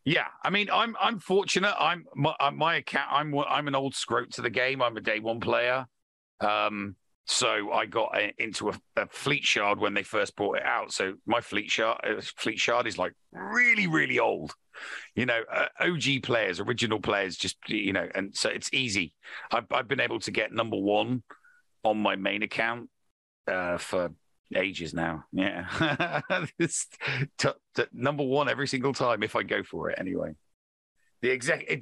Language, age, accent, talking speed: English, 50-69, British, 185 wpm